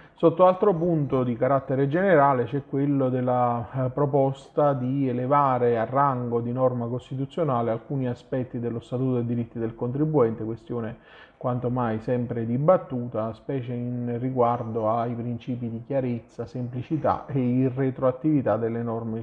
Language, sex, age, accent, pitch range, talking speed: Italian, male, 30-49, native, 120-140 Hz, 130 wpm